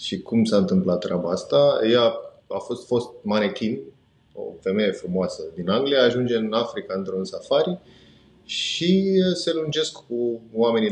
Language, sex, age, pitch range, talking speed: Romanian, male, 20-39, 120-190 Hz, 145 wpm